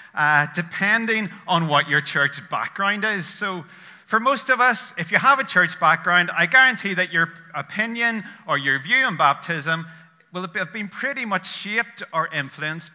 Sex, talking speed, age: male, 170 wpm, 40-59